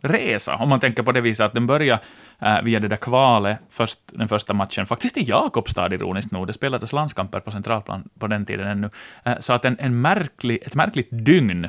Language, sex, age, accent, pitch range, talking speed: Swedish, male, 20-39, Finnish, 110-145 Hz, 215 wpm